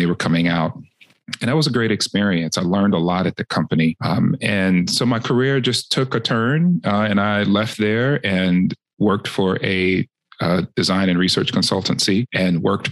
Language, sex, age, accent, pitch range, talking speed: English, male, 40-59, American, 85-115 Hz, 195 wpm